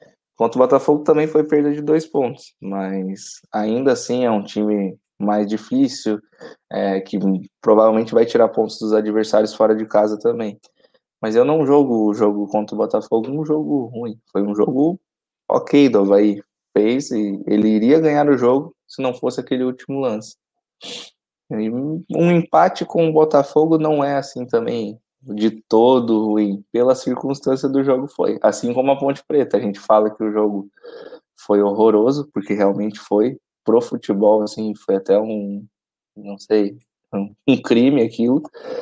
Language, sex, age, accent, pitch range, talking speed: Portuguese, male, 20-39, Brazilian, 105-140 Hz, 160 wpm